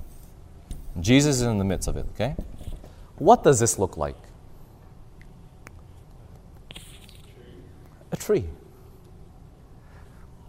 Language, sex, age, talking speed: English, male, 30-49, 85 wpm